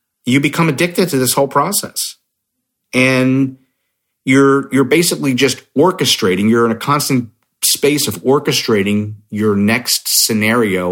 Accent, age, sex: American, 40-59, male